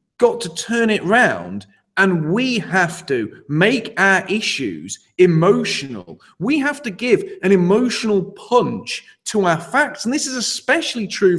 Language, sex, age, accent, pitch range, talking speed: English, male, 30-49, British, 160-240 Hz, 150 wpm